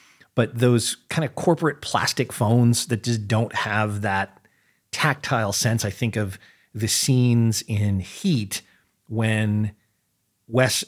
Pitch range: 105-125 Hz